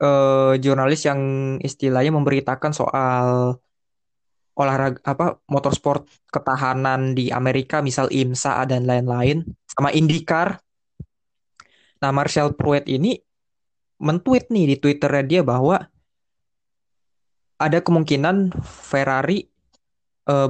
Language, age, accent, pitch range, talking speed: Indonesian, 20-39, native, 135-155 Hz, 95 wpm